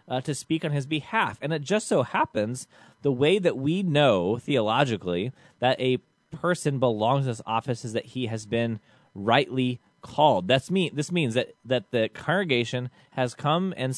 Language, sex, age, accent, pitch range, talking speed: English, male, 30-49, American, 115-145 Hz, 185 wpm